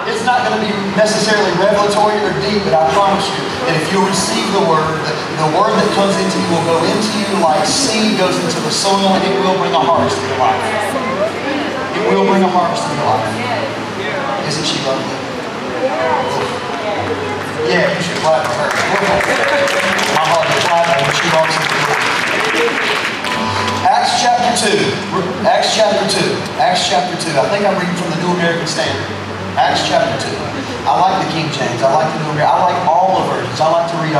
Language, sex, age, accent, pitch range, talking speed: English, male, 30-49, American, 165-210 Hz, 190 wpm